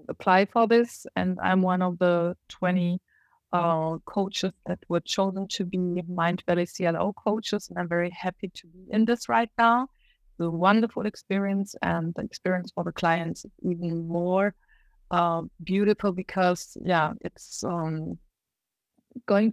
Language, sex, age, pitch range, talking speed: English, female, 30-49, 170-205 Hz, 150 wpm